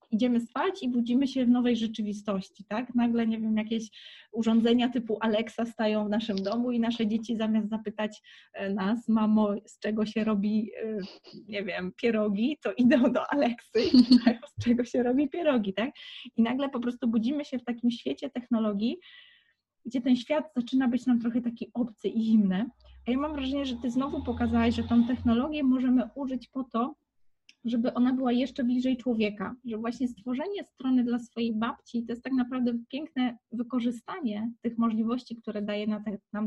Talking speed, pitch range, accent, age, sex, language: 175 wpm, 215-250 Hz, native, 20-39, female, Polish